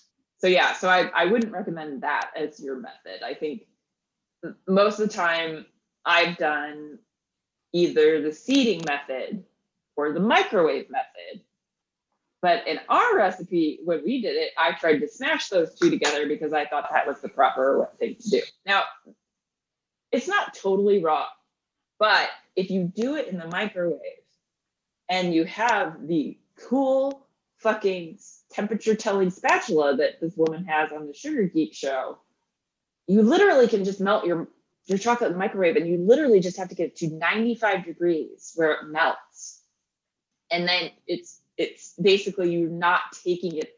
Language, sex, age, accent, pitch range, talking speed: English, female, 20-39, American, 165-220 Hz, 160 wpm